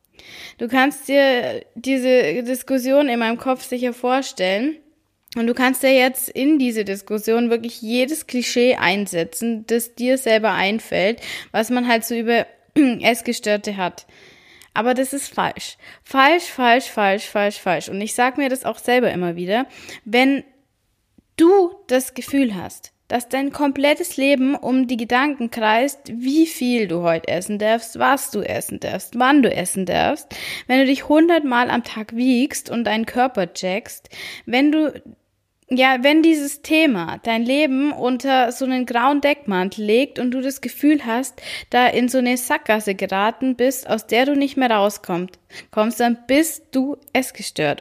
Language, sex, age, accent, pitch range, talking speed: German, female, 20-39, German, 225-270 Hz, 160 wpm